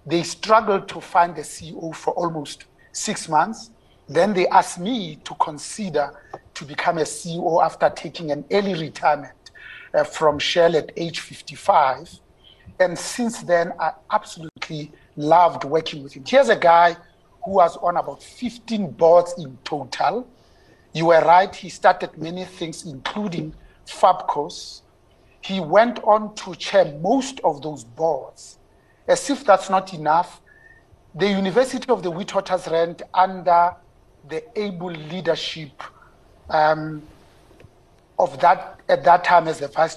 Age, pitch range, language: 50-69, 155-195 Hz, English